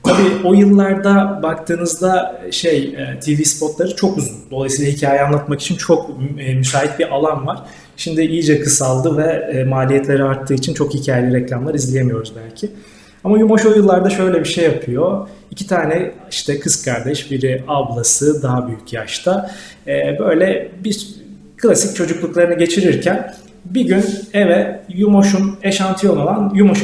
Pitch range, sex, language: 140-195 Hz, male, Turkish